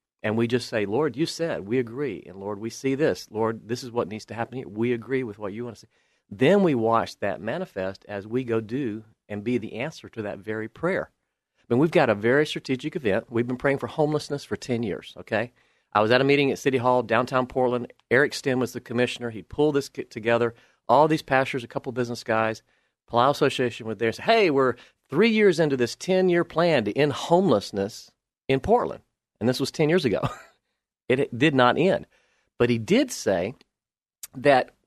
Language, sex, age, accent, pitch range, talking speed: English, male, 40-59, American, 115-155 Hz, 220 wpm